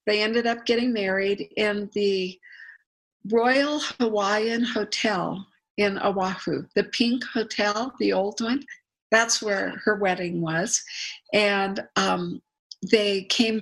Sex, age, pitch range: female, 50-69, 185-230 Hz